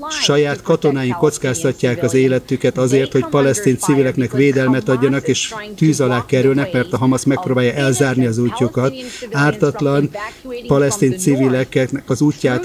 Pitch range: 130-145 Hz